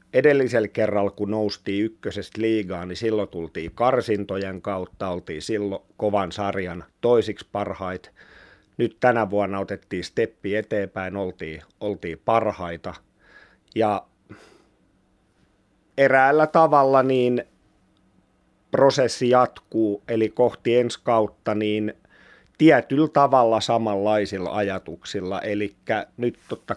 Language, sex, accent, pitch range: Finnish, male, native, 95-110 Hz